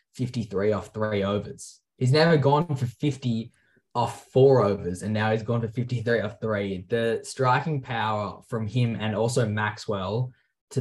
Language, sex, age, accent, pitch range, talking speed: English, male, 10-29, Australian, 100-115 Hz, 160 wpm